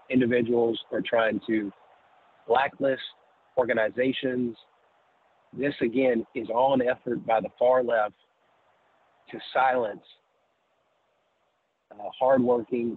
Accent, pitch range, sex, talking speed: American, 110-125 Hz, male, 95 wpm